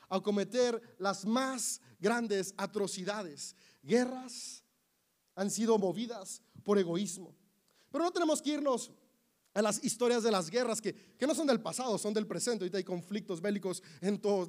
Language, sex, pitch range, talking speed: Spanish, male, 195-260 Hz, 155 wpm